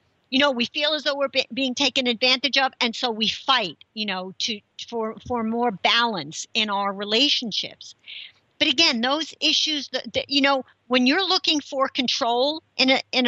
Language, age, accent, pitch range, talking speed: English, 50-69, American, 220-275 Hz, 185 wpm